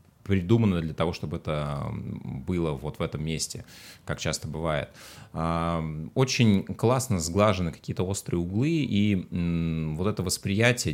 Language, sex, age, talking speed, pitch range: Russian, male, 30-49, 125 wpm, 80-105 Hz